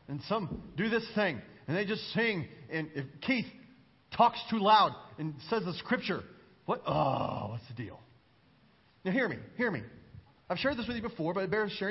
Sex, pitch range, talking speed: male, 200-285 Hz, 200 wpm